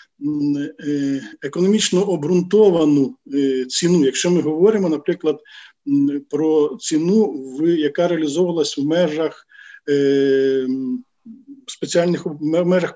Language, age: Ukrainian, 50-69